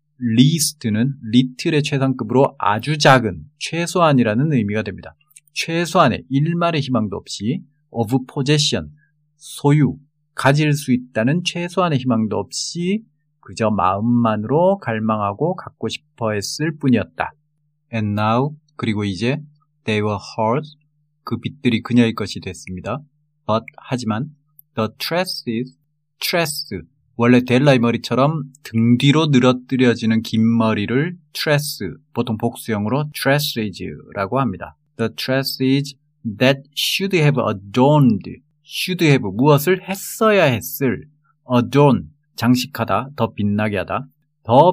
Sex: male